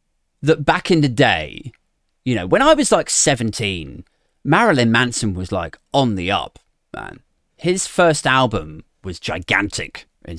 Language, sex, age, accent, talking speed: English, male, 30-49, British, 150 wpm